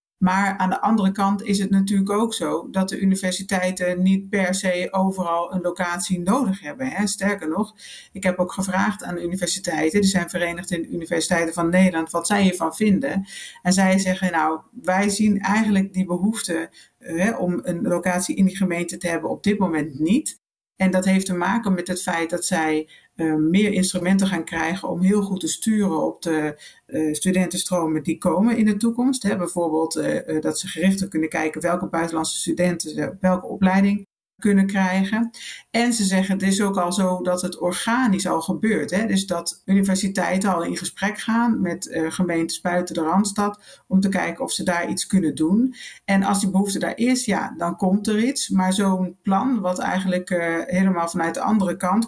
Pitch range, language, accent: 175-200 Hz, Dutch, Dutch